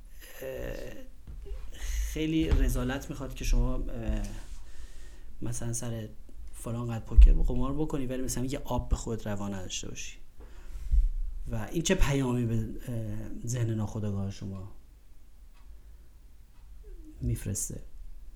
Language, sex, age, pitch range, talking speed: Persian, male, 40-59, 105-160 Hz, 100 wpm